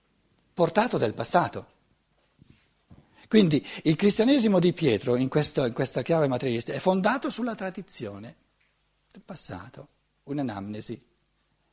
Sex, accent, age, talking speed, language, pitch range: male, native, 60-79, 100 wpm, Italian, 125-210 Hz